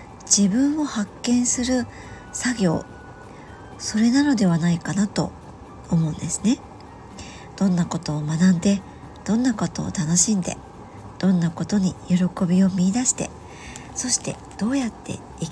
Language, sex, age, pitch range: Japanese, male, 50-69, 170-220 Hz